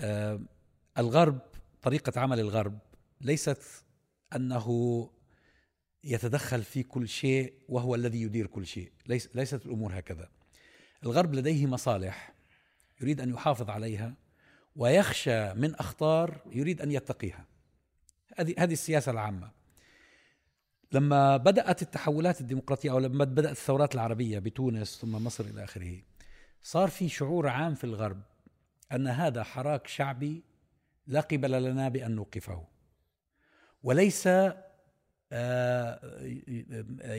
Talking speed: 105 wpm